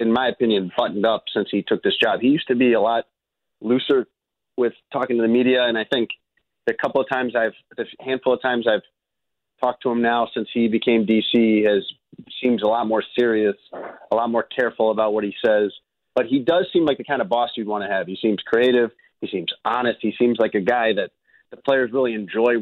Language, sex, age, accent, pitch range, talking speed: English, male, 30-49, American, 110-140 Hz, 230 wpm